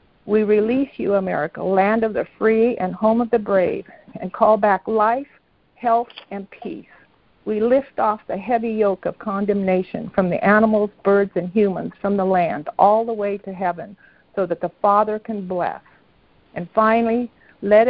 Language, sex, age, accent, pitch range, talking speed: English, female, 60-79, American, 195-230 Hz, 170 wpm